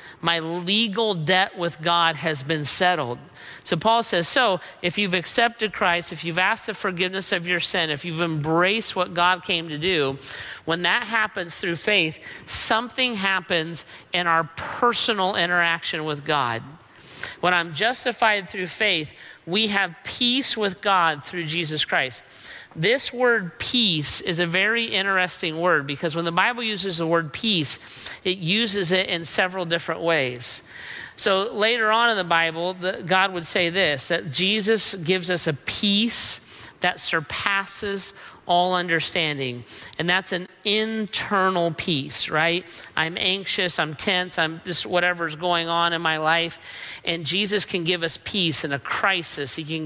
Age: 40-59